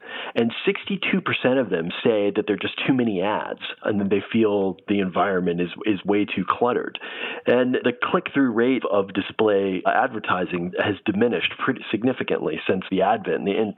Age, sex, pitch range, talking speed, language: 40-59, male, 100-120 Hz, 165 wpm, English